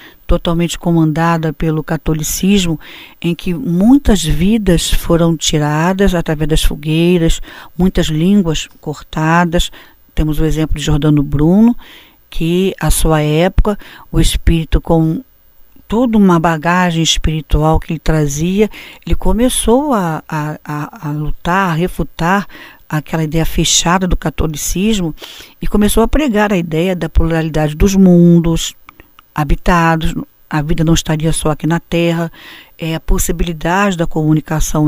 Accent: Brazilian